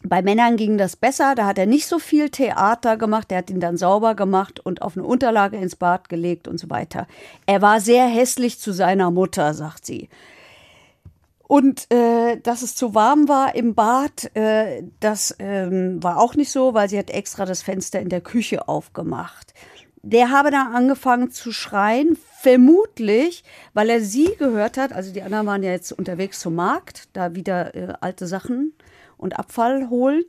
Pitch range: 190-255 Hz